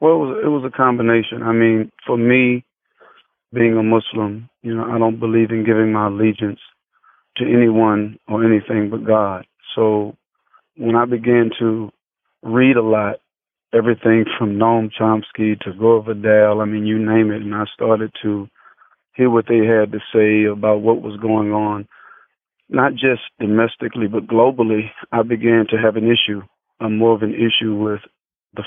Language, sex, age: English, male, 40-59